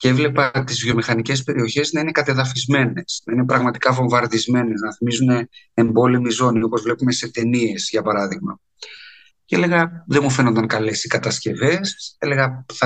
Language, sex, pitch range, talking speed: Greek, male, 115-130 Hz, 150 wpm